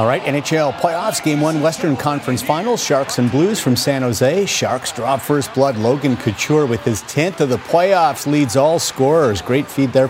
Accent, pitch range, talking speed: American, 125-155 Hz, 195 wpm